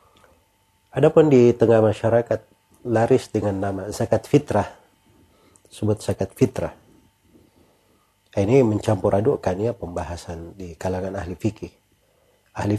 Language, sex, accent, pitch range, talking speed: Indonesian, male, native, 95-115 Hz, 105 wpm